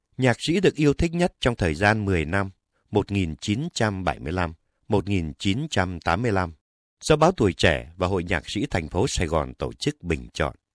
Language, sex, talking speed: Vietnamese, male, 155 wpm